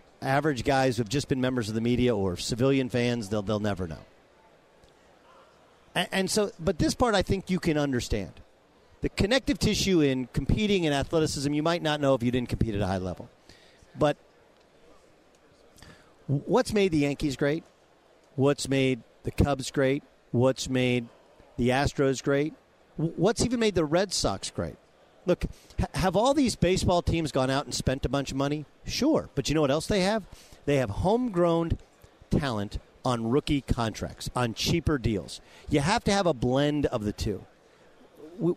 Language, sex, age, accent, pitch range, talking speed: English, male, 50-69, American, 125-185 Hz, 175 wpm